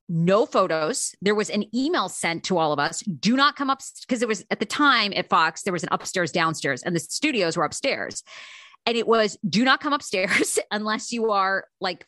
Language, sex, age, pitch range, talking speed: English, female, 40-59, 175-255 Hz, 220 wpm